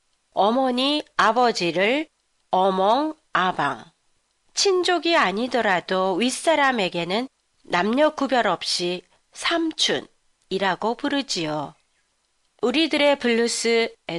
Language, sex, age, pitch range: Japanese, female, 40-59, 190-285 Hz